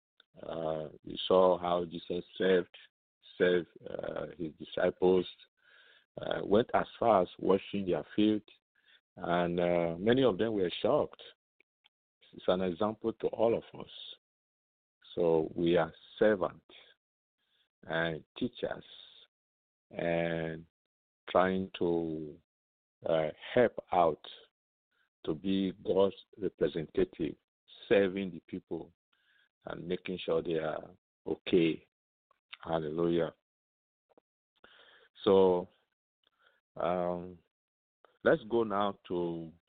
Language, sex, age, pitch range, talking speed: English, male, 50-69, 80-95 Hz, 95 wpm